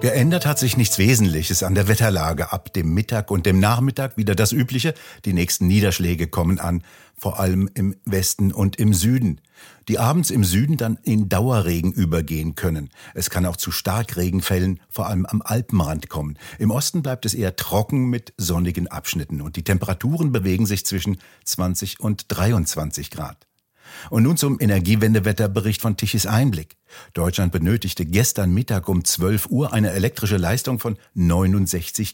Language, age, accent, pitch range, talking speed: German, 60-79, German, 90-110 Hz, 160 wpm